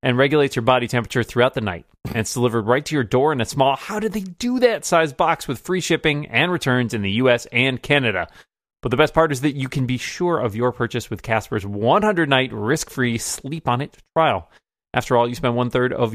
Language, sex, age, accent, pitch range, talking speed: English, male, 30-49, American, 115-160 Hz, 225 wpm